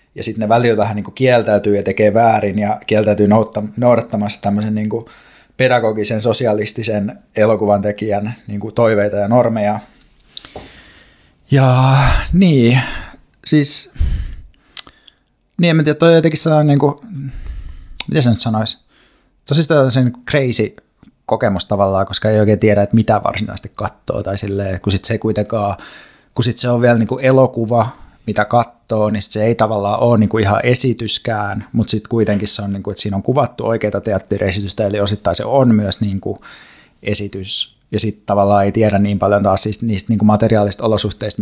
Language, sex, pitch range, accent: Finnish, male, 100-115 Hz, native